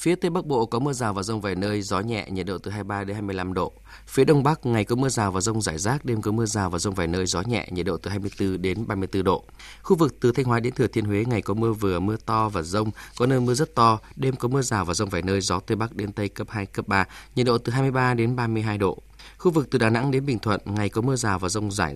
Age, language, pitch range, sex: 20-39, Vietnamese, 100-125 Hz, male